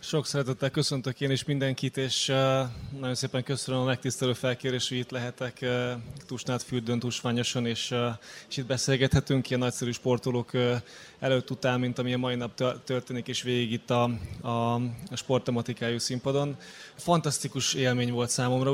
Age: 20-39